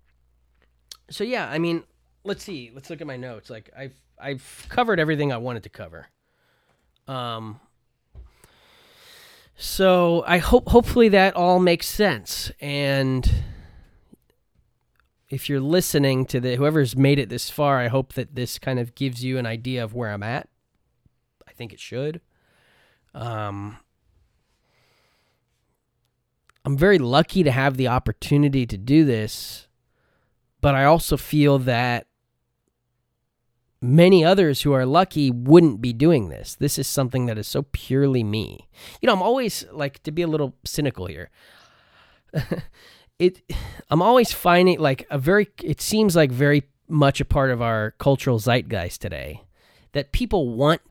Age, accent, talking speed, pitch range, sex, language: 20-39, American, 145 wpm, 115-150 Hz, male, English